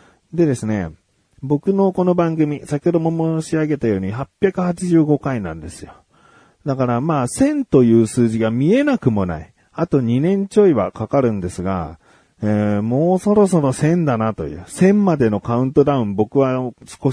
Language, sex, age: Japanese, male, 40-59